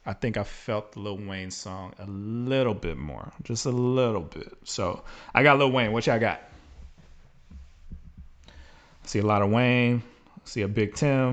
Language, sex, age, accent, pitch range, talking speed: English, male, 30-49, American, 80-120 Hz, 185 wpm